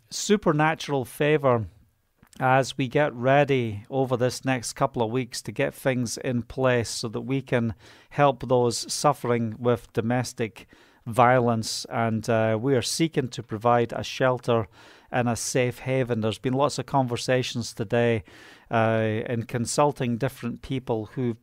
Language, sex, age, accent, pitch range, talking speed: English, male, 40-59, British, 115-140 Hz, 145 wpm